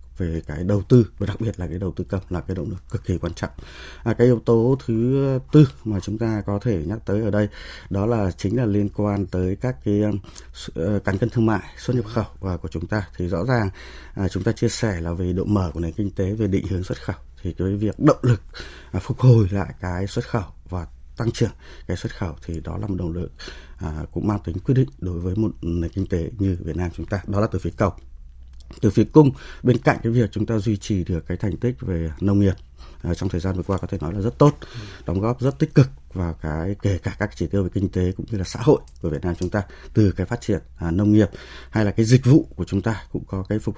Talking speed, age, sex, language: 270 wpm, 20-39, male, Vietnamese